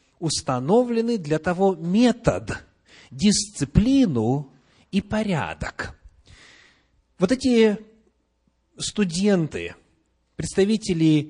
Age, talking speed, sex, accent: 30-49, 60 wpm, male, native